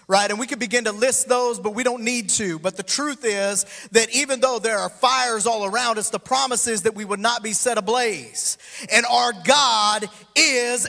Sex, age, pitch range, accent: male, 40-59, 220-290 Hz, American